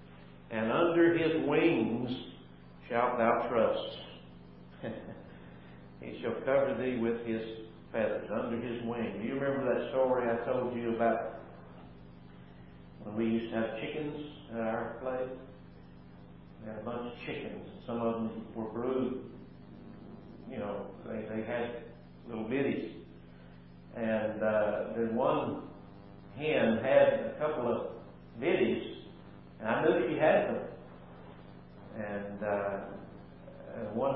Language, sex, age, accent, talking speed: English, male, 50-69, American, 130 wpm